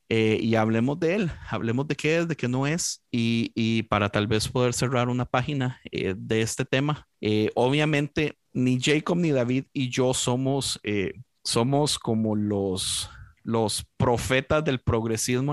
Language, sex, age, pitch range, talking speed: Spanish, male, 30-49, 115-135 Hz, 165 wpm